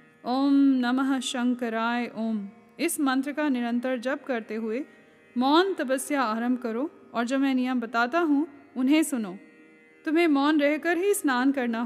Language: Hindi